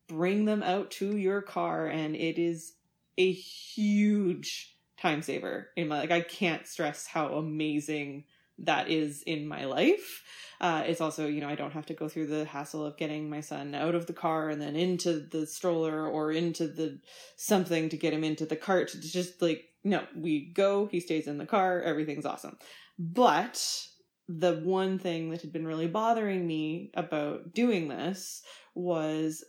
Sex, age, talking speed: female, 20-39, 180 wpm